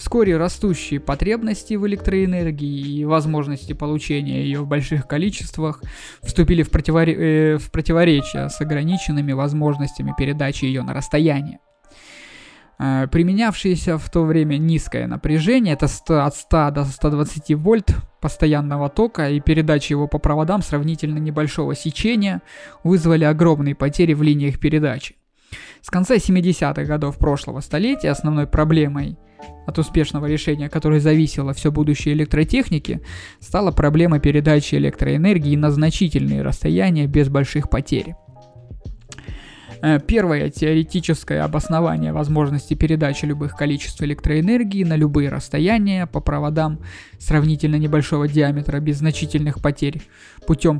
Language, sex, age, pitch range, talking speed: Russian, male, 20-39, 145-165 Hz, 115 wpm